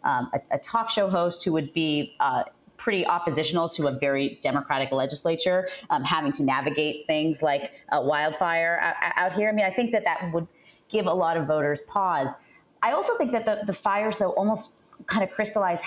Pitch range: 155-210 Hz